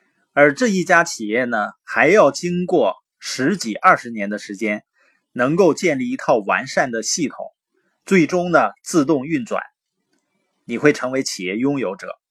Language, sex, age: Chinese, male, 20-39